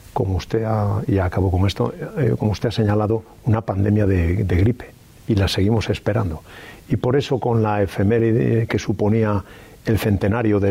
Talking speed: 180 wpm